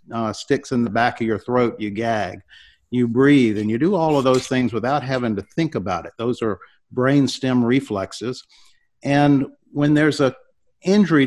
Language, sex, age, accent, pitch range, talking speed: English, male, 50-69, American, 115-140 Hz, 185 wpm